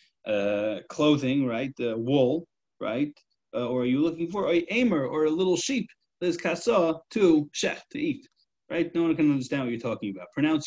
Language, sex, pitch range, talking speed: English, male, 130-170 Hz, 190 wpm